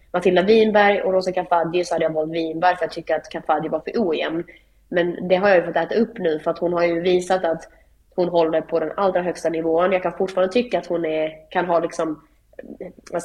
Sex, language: female, English